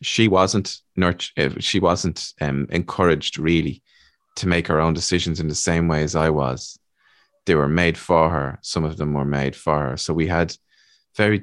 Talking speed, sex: 190 wpm, male